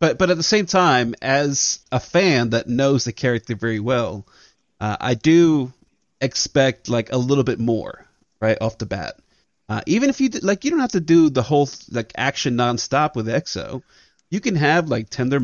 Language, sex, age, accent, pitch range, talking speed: English, male, 30-49, American, 115-160 Hz, 200 wpm